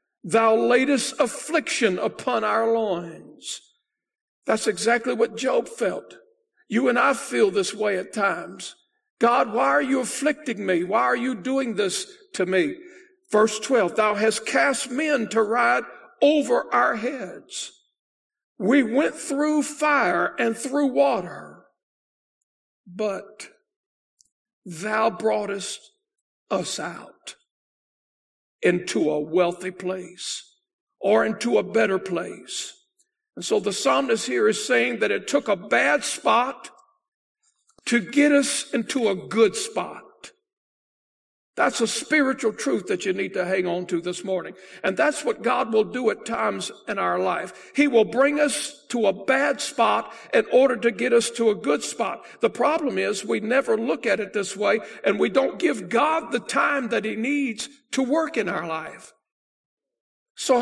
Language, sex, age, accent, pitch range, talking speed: English, male, 50-69, American, 210-295 Hz, 150 wpm